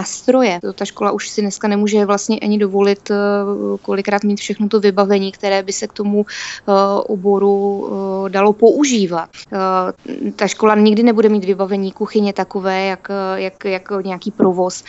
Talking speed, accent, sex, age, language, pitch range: 155 wpm, native, female, 20-39, Czech, 190-210 Hz